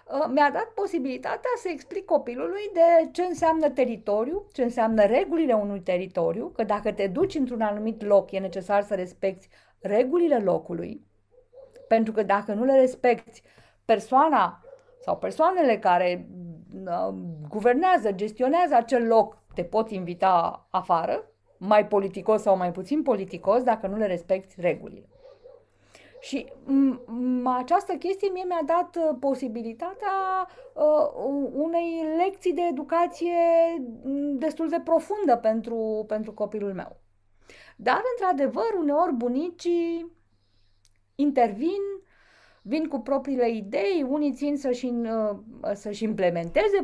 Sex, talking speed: female, 110 wpm